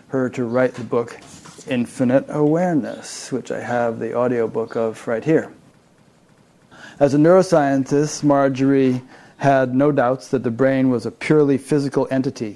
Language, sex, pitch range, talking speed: English, male, 120-140 Hz, 145 wpm